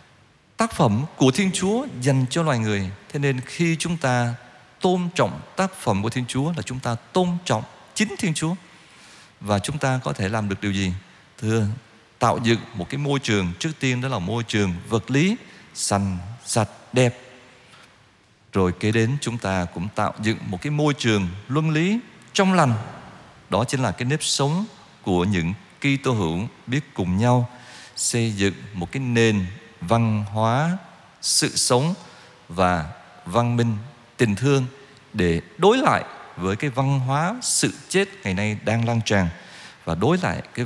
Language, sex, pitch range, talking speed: Vietnamese, male, 105-140 Hz, 175 wpm